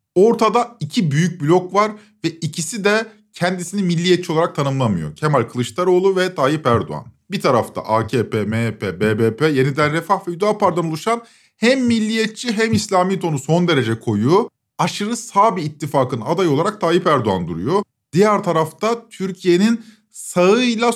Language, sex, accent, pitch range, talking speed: Turkish, male, native, 150-205 Hz, 135 wpm